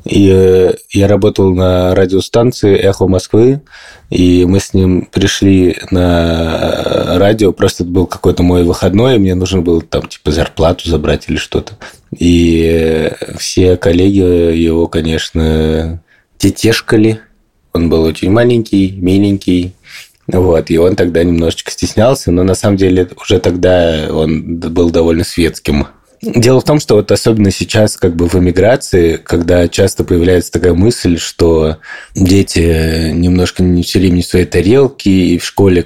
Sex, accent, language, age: male, native, Russian, 20-39